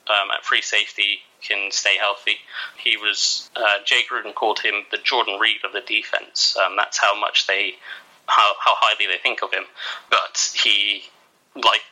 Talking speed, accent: 175 wpm, British